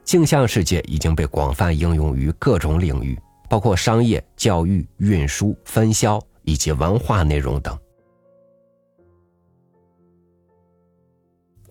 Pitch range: 80-110 Hz